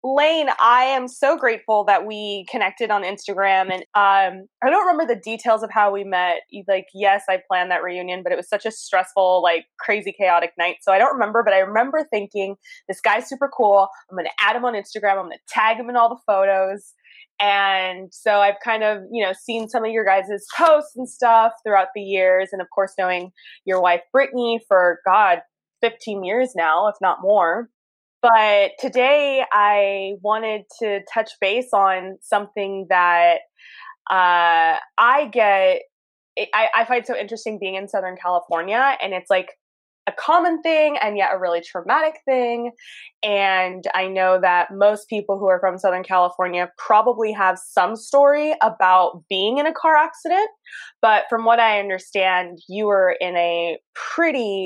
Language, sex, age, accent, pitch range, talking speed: English, female, 20-39, American, 185-235 Hz, 175 wpm